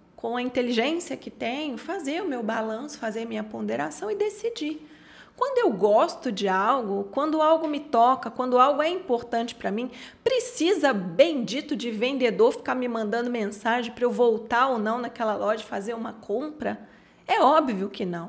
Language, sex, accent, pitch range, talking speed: Portuguese, female, Brazilian, 215-285 Hz, 165 wpm